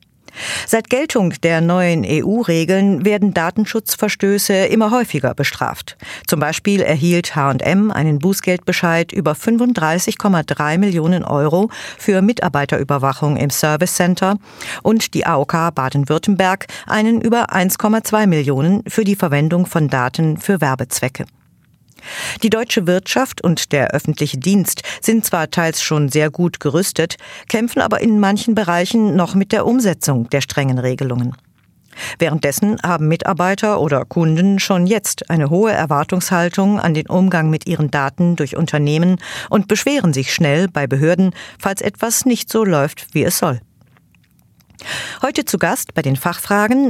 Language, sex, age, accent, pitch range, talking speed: German, female, 50-69, German, 150-205 Hz, 135 wpm